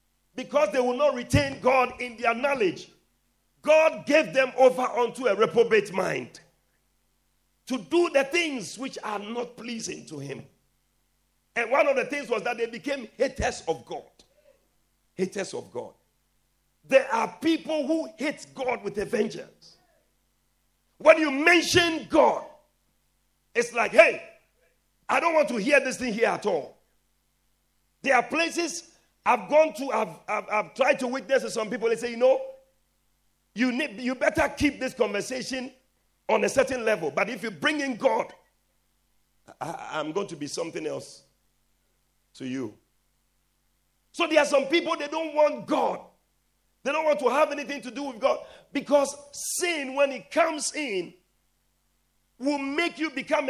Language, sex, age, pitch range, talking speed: English, male, 50-69, 240-300 Hz, 160 wpm